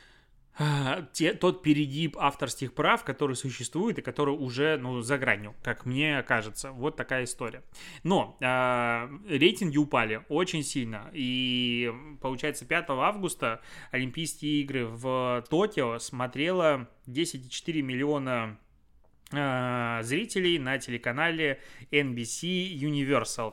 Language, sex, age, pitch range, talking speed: Russian, male, 20-39, 125-150 Hz, 100 wpm